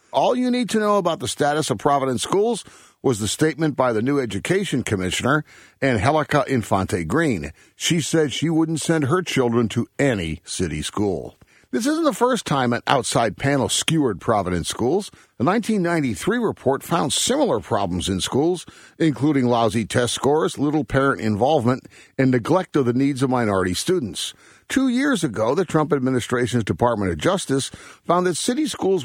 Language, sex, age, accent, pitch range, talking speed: English, male, 50-69, American, 115-165 Hz, 165 wpm